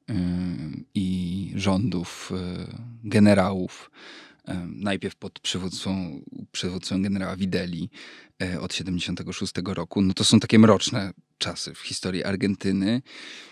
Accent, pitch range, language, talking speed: native, 95-115 Hz, Polish, 110 wpm